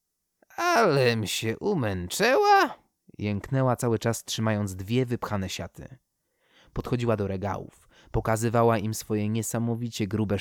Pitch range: 100-125 Hz